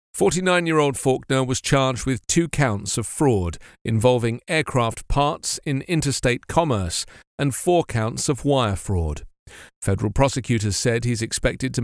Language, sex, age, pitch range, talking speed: English, male, 40-59, 115-155 Hz, 135 wpm